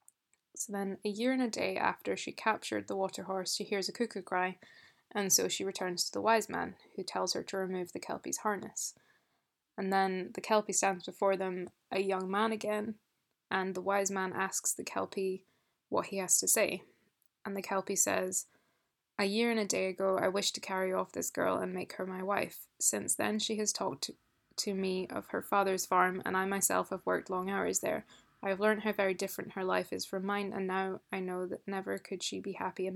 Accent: British